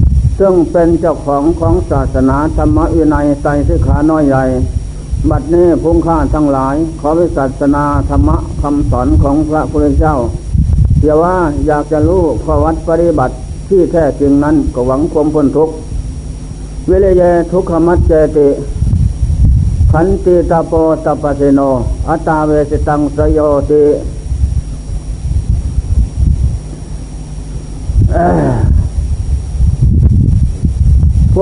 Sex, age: male, 60-79